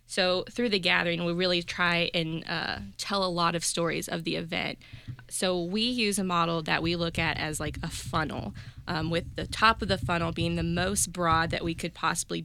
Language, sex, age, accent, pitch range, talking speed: English, female, 20-39, American, 160-180 Hz, 215 wpm